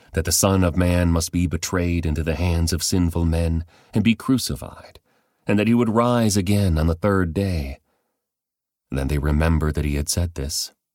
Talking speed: 190 wpm